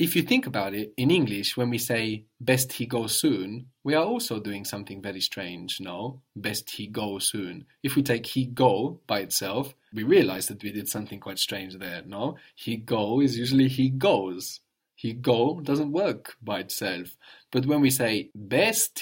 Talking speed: 190 wpm